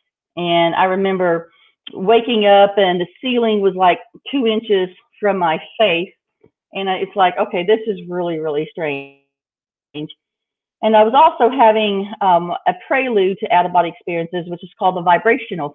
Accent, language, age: American, English, 40-59